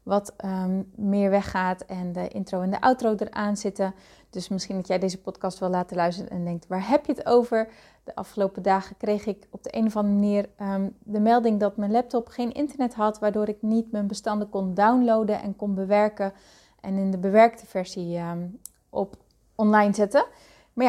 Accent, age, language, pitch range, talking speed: Dutch, 30-49, Dutch, 195-225 Hz, 185 wpm